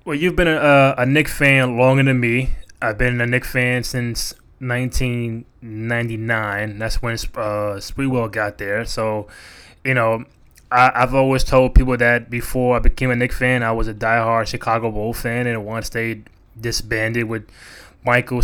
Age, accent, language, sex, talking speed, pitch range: 20-39, American, English, male, 165 wpm, 115-135 Hz